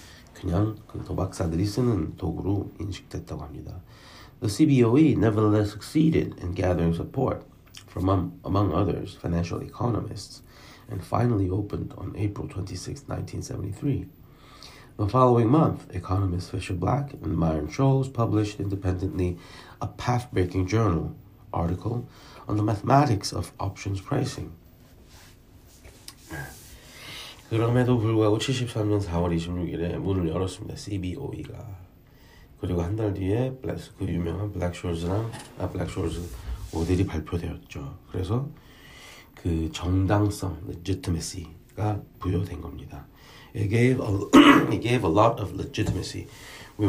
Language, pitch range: Korean, 90-115 Hz